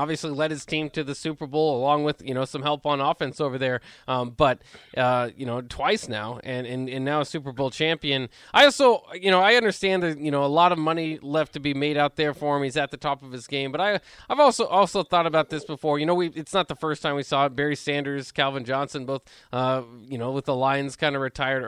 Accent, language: American, English